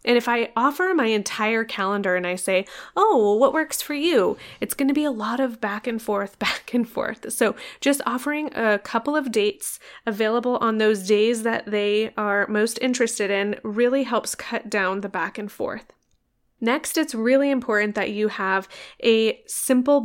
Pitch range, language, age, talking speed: 210-255 Hz, English, 20-39, 185 wpm